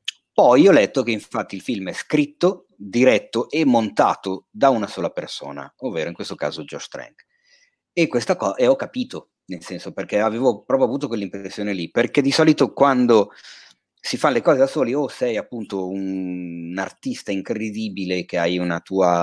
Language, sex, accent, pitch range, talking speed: Italian, male, native, 95-135 Hz, 180 wpm